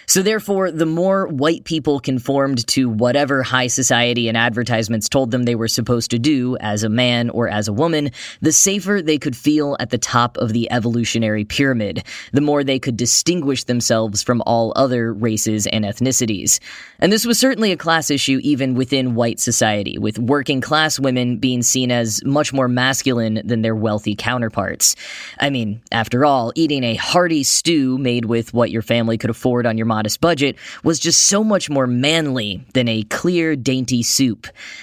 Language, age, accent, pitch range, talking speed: English, 10-29, American, 115-150 Hz, 185 wpm